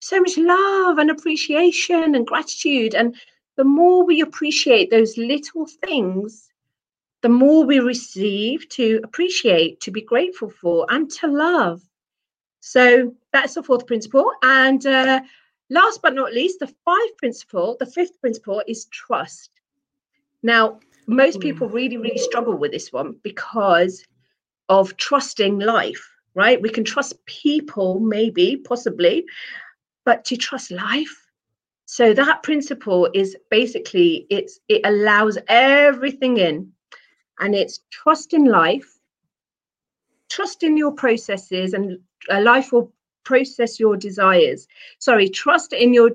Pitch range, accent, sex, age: 225-315 Hz, British, female, 40-59